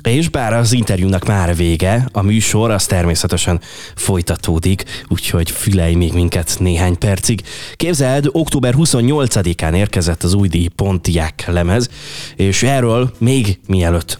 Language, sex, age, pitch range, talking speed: Hungarian, male, 20-39, 90-115 Hz, 125 wpm